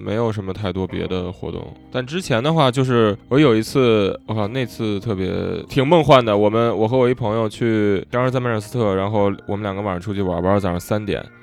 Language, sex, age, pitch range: Chinese, male, 10-29, 95-110 Hz